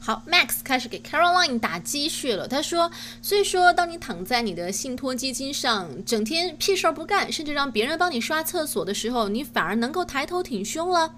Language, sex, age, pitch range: Chinese, female, 20-39, 215-315 Hz